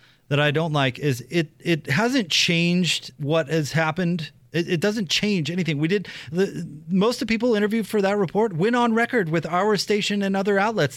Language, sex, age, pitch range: English, male, 30-49, 135-185 Hz